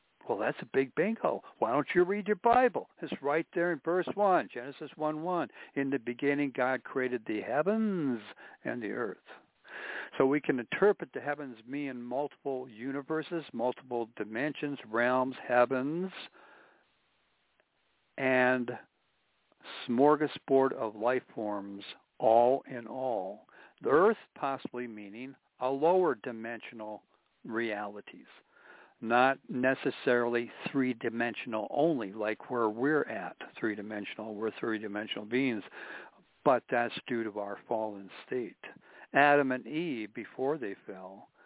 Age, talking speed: 60-79, 120 wpm